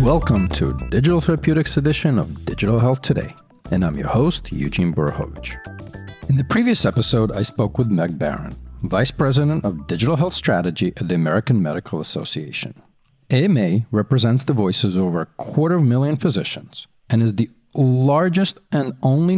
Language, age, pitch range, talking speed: English, 40-59, 95-145 Hz, 165 wpm